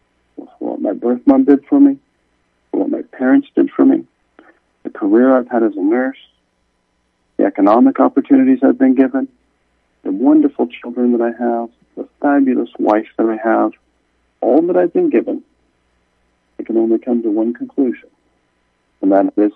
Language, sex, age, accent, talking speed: English, male, 50-69, American, 165 wpm